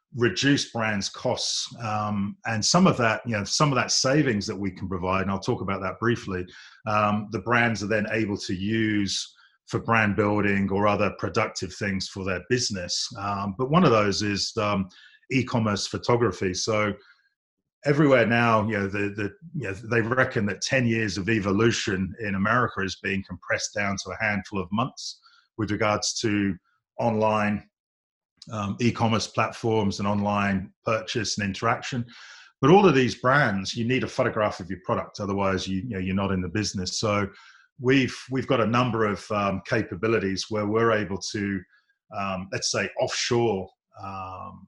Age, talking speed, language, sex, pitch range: 30-49, 175 wpm, English, male, 100-115 Hz